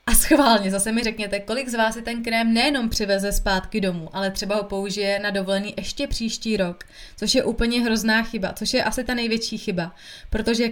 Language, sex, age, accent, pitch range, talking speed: Czech, female, 20-39, native, 195-220 Hz, 200 wpm